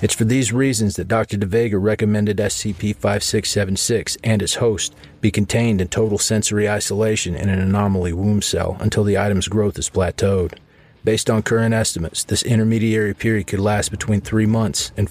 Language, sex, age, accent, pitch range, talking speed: English, male, 40-59, American, 90-110 Hz, 165 wpm